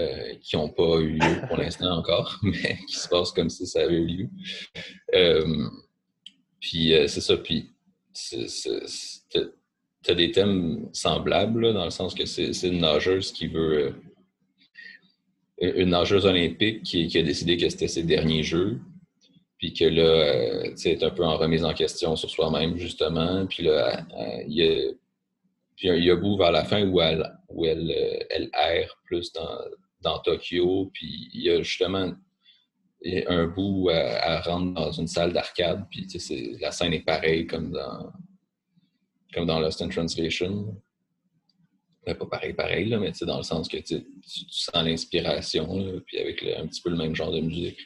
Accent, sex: Canadian, male